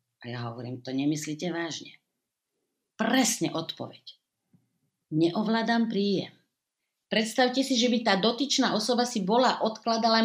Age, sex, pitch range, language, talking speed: 50-69, female, 160-255 Hz, Slovak, 110 wpm